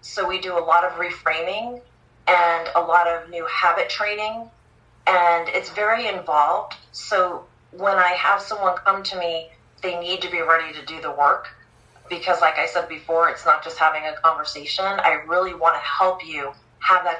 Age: 30-49